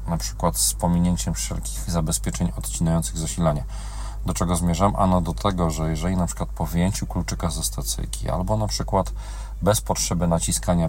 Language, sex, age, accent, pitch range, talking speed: Polish, male, 40-59, native, 85-110 Hz, 160 wpm